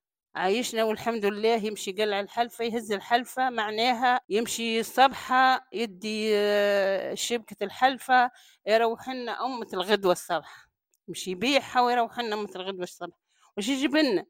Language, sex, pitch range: Arabic, female, 215-265 Hz